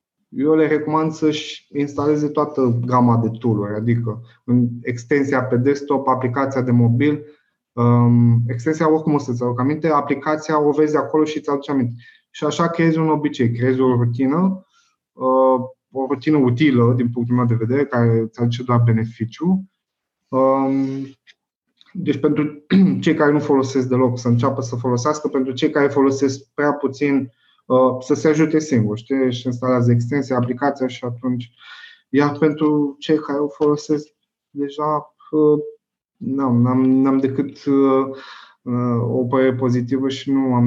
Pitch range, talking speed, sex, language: 120-150 Hz, 140 wpm, male, Romanian